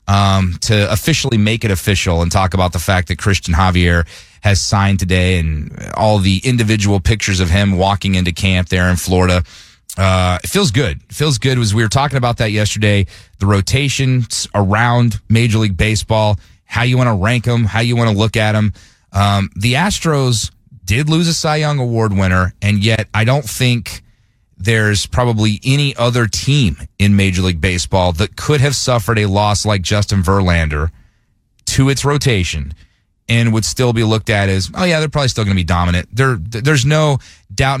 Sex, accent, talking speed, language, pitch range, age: male, American, 190 wpm, English, 95-120 Hz, 30-49